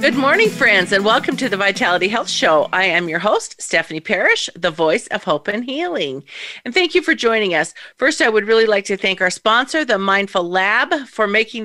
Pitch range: 195-260 Hz